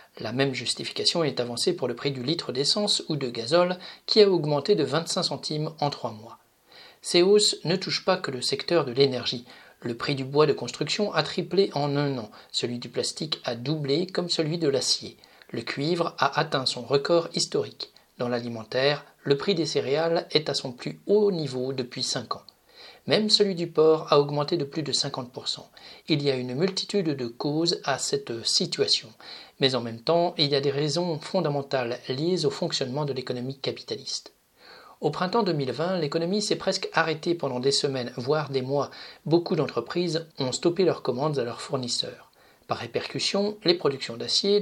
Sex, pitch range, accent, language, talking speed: male, 135-175 Hz, French, French, 185 wpm